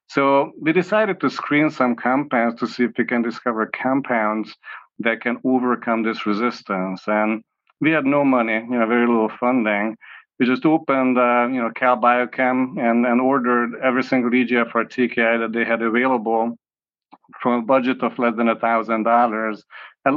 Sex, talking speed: male, 170 wpm